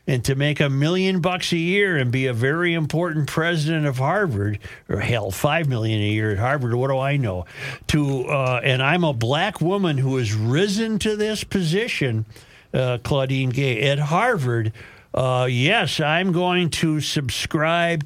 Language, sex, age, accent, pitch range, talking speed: English, male, 50-69, American, 125-175 Hz, 175 wpm